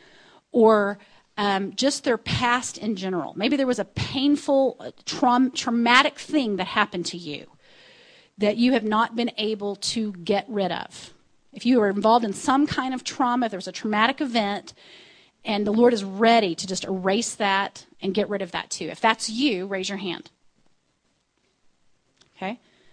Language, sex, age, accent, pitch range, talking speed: English, female, 30-49, American, 205-260 Hz, 165 wpm